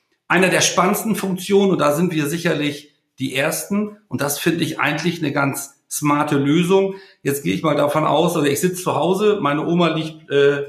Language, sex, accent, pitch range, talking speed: German, male, German, 145-175 Hz, 195 wpm